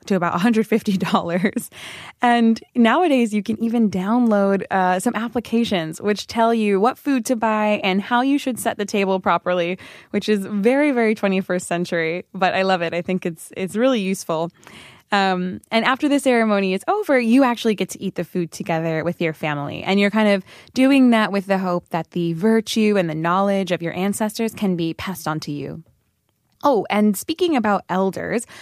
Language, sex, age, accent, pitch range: Korean, female, 20-39, American, 175-225 Hz